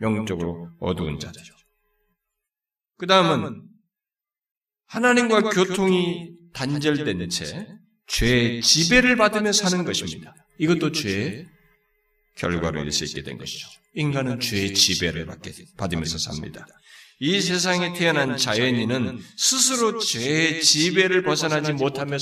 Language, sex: Korean, male